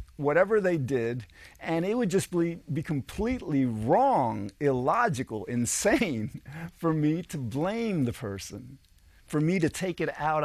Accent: American